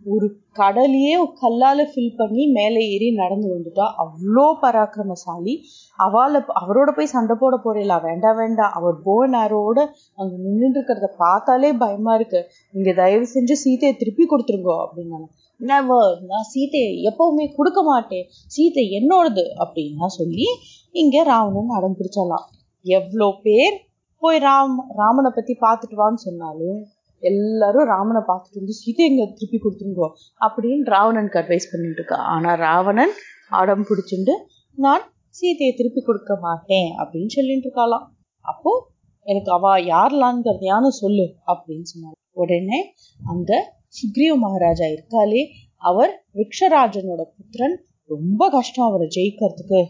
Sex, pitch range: female, 185-265 Hz